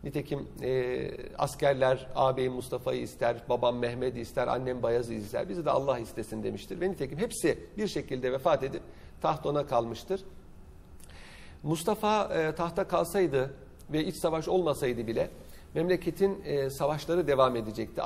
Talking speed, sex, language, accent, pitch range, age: 135 wpm, male, Turkish, native, 125-165 Hz, 50-69